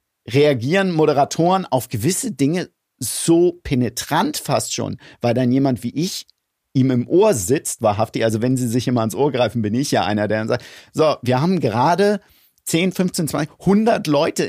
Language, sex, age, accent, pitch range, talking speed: German, male, 50-69, German, 115-150 Hz, 180 wpm